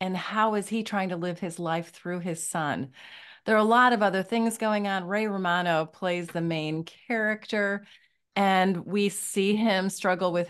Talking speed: 190 wpm